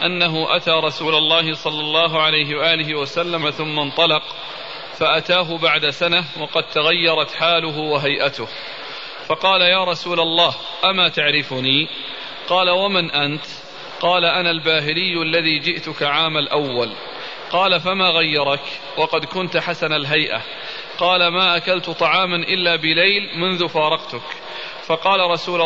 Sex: male